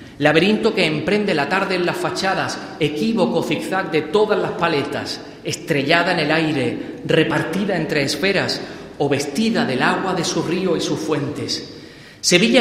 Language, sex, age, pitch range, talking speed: Spanish, male, 40-59, 155-205 Hz, 150 wpm